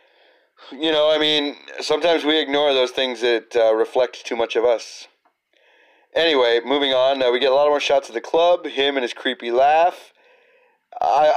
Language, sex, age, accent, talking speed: English, male, 30-49, American, 185 wpm